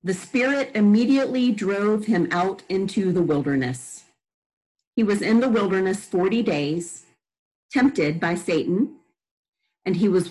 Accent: American